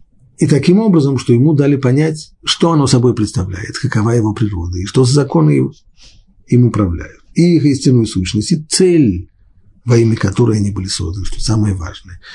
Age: 50-69